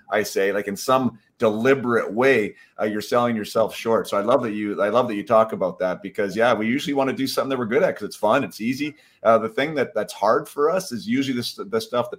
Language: English